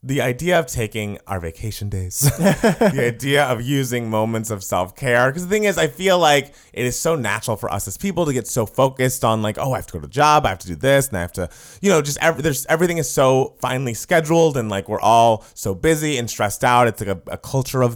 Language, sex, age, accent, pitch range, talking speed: English, male, 30-49, American, 105-155 Hz, 260 wpm